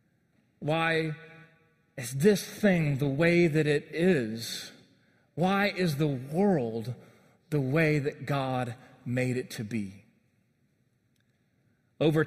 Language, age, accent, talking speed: English, 40-59, American, 110 wpm